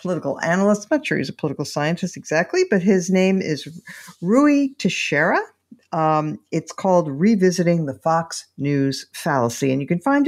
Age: 50-69